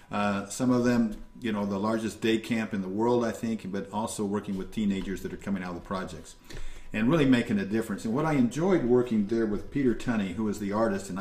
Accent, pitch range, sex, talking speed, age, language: American, 100-130 Hz, male, 245 wpm, 50-69, English